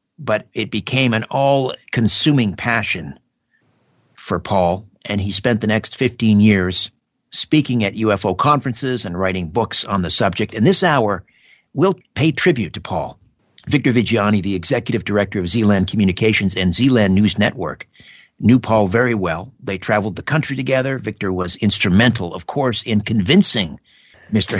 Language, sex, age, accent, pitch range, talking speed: English, male, 60-79, American, 105-130 Hz, 150 wpm